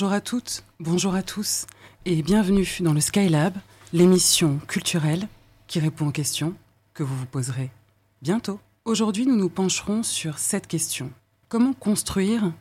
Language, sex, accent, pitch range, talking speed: French, female, French, 145-190 Hz, 150 wpm